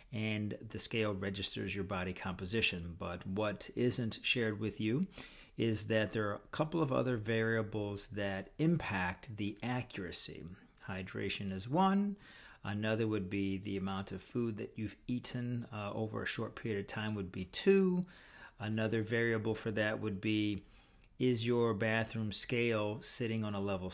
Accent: American